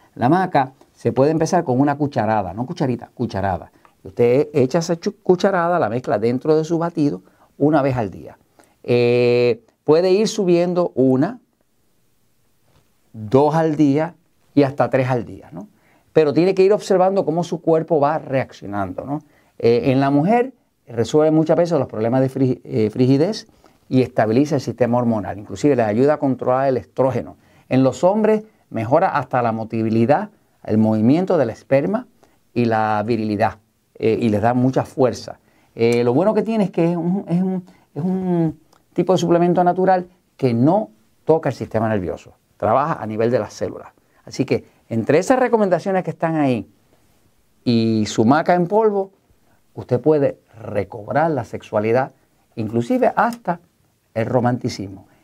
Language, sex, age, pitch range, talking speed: Spanish, male, 50-69, 115-170 Hz, 155 wpm